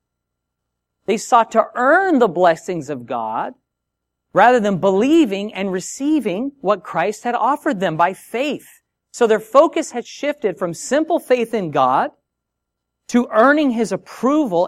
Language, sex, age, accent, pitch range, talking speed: English, male, 40-59, American, 130-205 Hz, 140 wpm